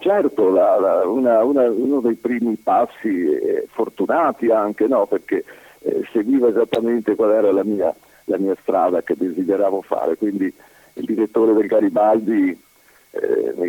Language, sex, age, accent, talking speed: Italian, male, 50-69, native, 145 wpm